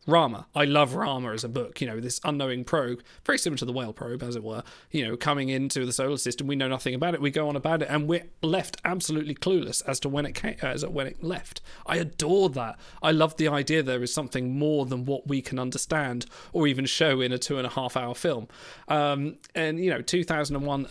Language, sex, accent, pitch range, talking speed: English, male, British, 130-160 Hz, 245 wpm